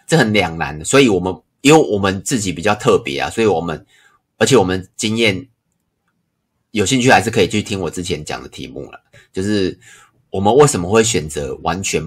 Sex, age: male, 30-49